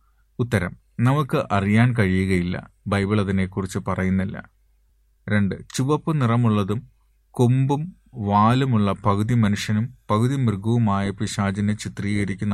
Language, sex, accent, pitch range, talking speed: Malayalam, male, native, 95-115 Hz, 85 wpm